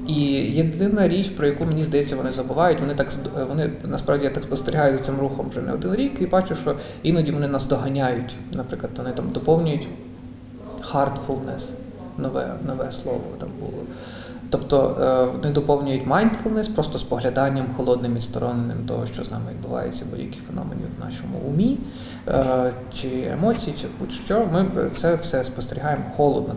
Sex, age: male, 20-39